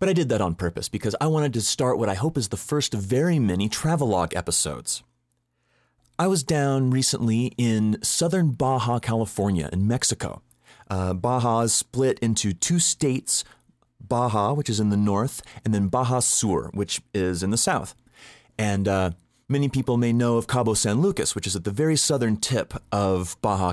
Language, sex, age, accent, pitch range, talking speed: English, male, 30-49, American, 105-135 Hz, 185 wpm